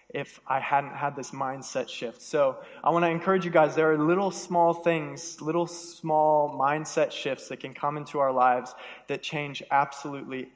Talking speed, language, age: 180 wpm, English, 20-39